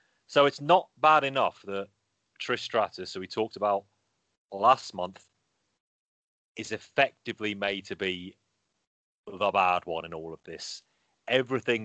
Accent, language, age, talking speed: British, English, 30-49, 135 wpm